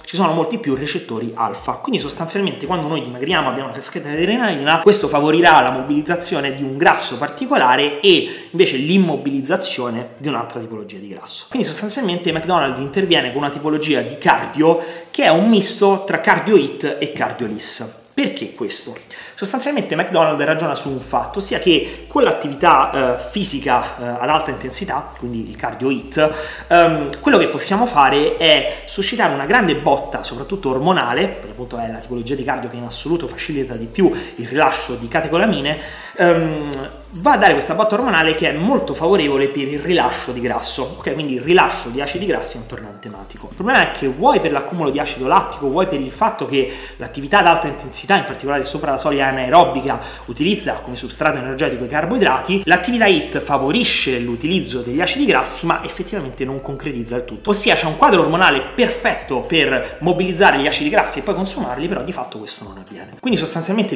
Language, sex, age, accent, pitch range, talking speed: Italian, male, 30-49, native, 130-185 Hz, 185 wpm